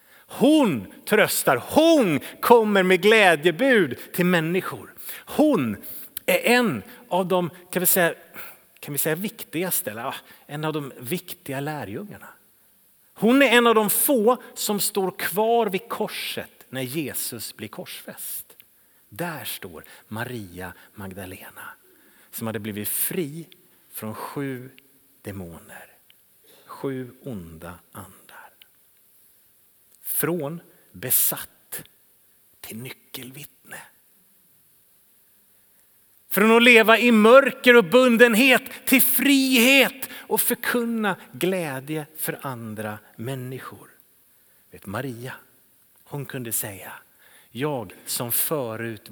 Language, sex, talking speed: Swedish, male, 100 wpm